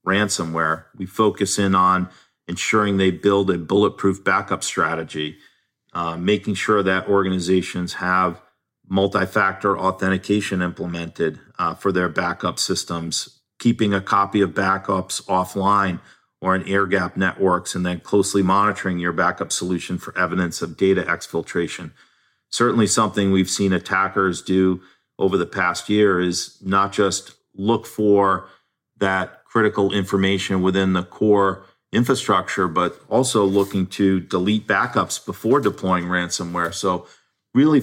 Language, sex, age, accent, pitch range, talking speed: English, male, 40-59, American, 90-100 Hz, 130 wpm